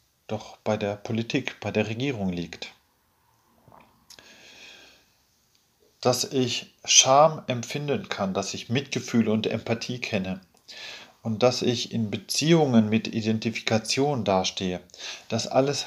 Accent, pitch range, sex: German, 105-140 Hz, male